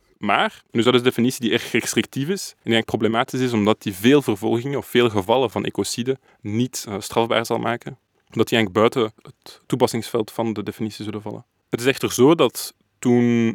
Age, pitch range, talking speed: 20-39, 110-125 Hz, 210 wpm